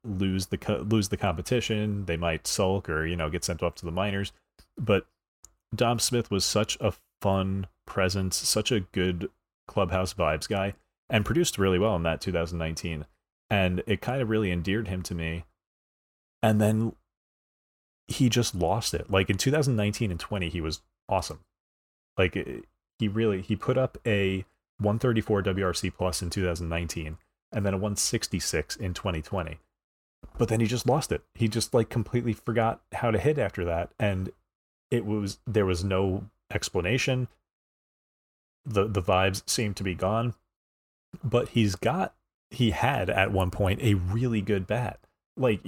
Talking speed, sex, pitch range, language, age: 165 wpm, male, 90-110 Hz, English, 30-49